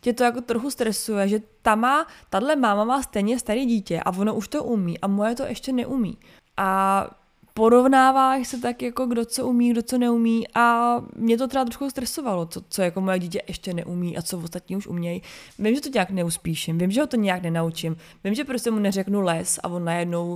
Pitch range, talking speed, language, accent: 200-250 Hz, 205 wpm, Czech, native